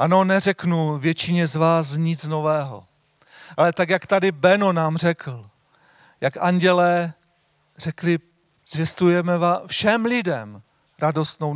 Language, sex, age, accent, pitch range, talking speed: Czech, male, 40-59, native, 150-195 Hz, 110 wpm